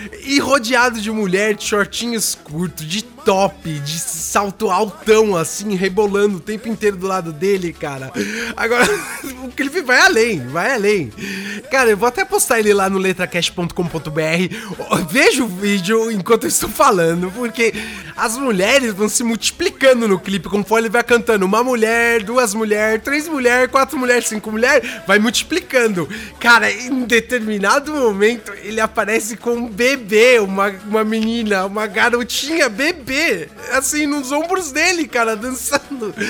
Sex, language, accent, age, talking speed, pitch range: male, English, Brazilian, 20-39, 150 wpm, 200-265 Hz